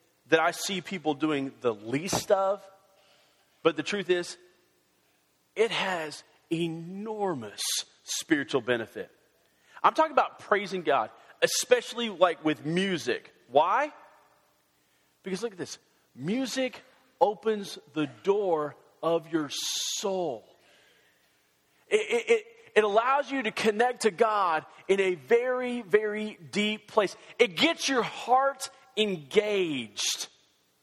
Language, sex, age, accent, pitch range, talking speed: English, male, 40-59, American, 180-270 Hz, 110 wpm